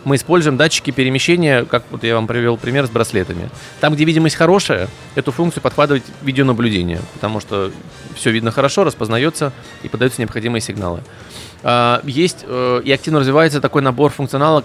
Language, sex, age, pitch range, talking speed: Russian, male, 20-39, 115-145 Hz, 150 wpm